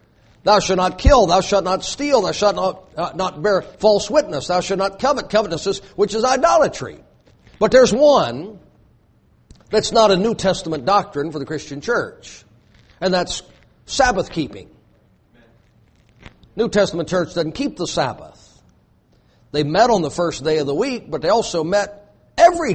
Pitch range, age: 145-200 Hz, 50-69